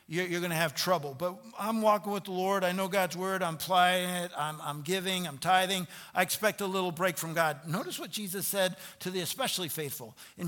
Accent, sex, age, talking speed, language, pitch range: American, male, 50-69, 220 wpm, English, 165-200 Hz